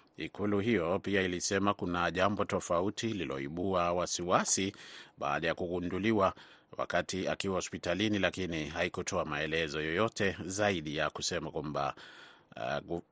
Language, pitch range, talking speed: Swahili, 90-105 Hz, 110 wpm